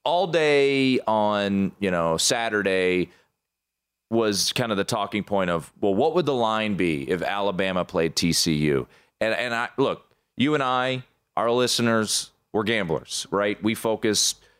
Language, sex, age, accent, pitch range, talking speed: English, male, 30-49, American, 100-145 Hz, 150 wpm